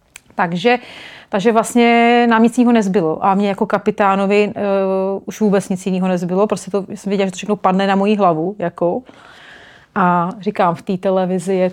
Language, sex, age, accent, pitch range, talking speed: Czech, female, 30-49, native, 175-200 Hz, 180 wpm